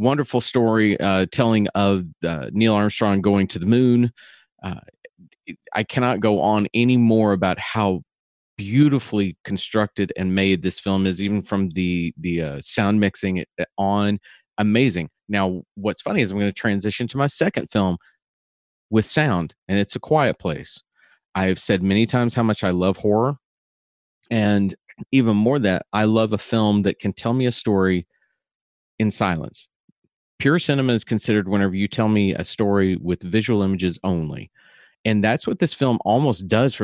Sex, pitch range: male, 95-115 Hz